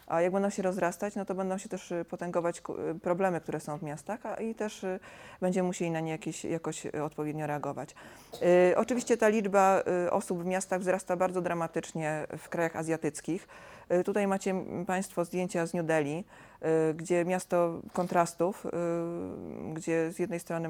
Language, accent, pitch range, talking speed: Polish, native, 160-195 Hz, 150 wpm